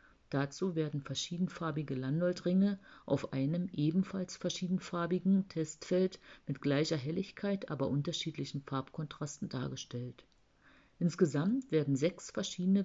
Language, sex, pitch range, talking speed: German, female, 140-185 Hz, 95 wpm